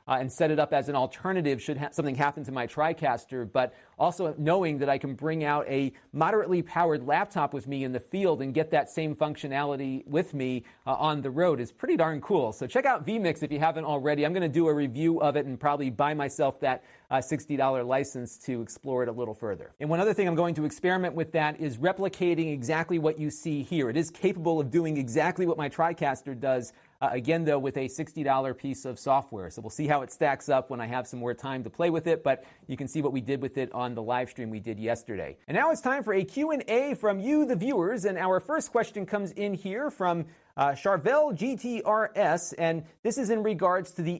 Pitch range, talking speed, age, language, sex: 140-175 Hz, 235 wpm, 40-59, English, male